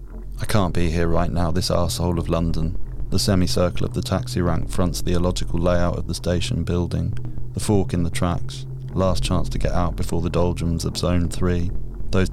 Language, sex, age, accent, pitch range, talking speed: English, male, 30-49, British, 85-95 Hz, 200 wpm